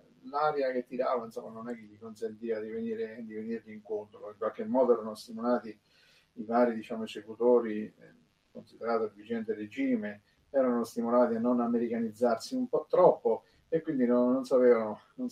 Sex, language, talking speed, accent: male, Italian, 160 wpm, native